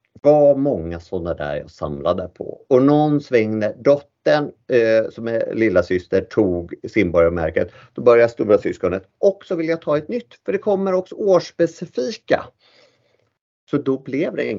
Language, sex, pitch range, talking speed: Swedish, male, 115-165 Hz, 165 wpm